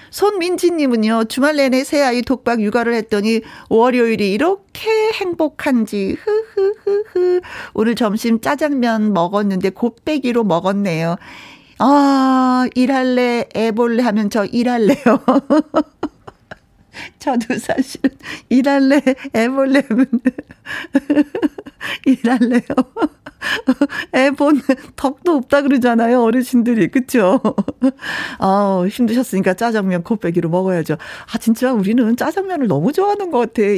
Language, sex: Korean, female